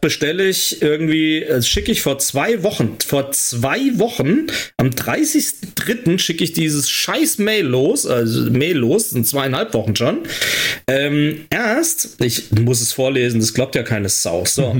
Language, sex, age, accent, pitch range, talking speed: German, male, 40-59, German, 130-205 Hz, 155 wpm